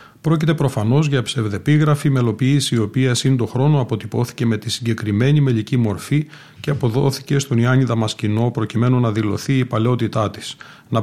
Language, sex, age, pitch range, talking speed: Greek, male, 40-59, 110-135 Hz, 150 wpm